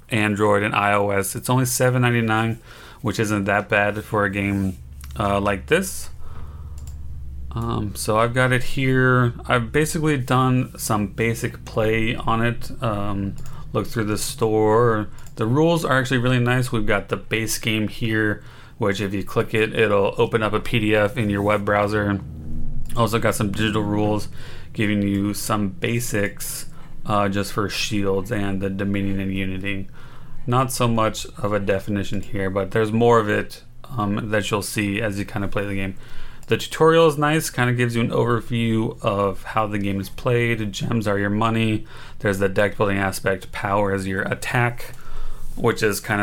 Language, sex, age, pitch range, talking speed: English, male, 30-49, 100-120 Hz, 175 wpm